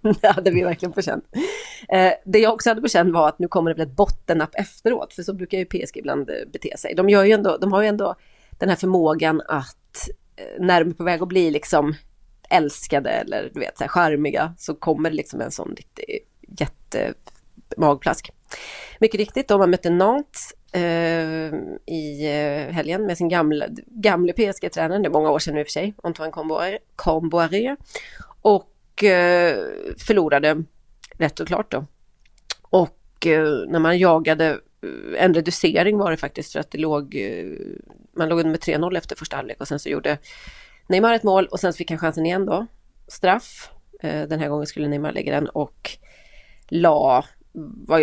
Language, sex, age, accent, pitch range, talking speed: Swedish, female, 30-49, native, 155-200 Hz, 170 wpm